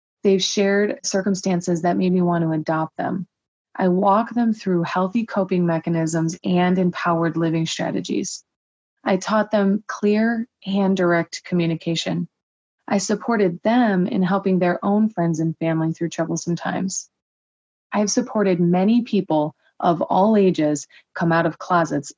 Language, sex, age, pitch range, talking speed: English, female, 20-39, 165-195 Hz, 140 wpm